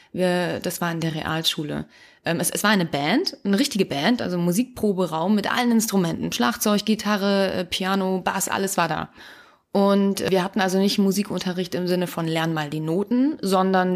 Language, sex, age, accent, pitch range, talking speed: German, female, 30-49, German, 170-205 Hz, 170 wpm